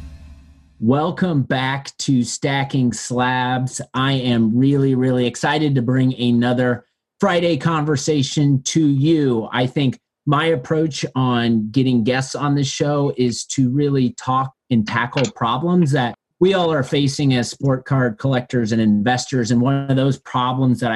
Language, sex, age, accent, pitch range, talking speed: English, male, 30-49, American, 120-140 Hz, 145 wpm